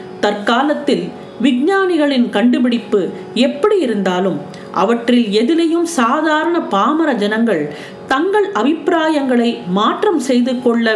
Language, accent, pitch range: Tamil, native, 215-295 Hz